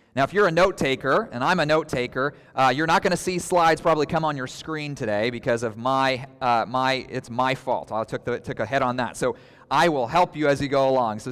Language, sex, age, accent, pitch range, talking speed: English, male, 30-49, American, 125-155 Hz, 255 wpm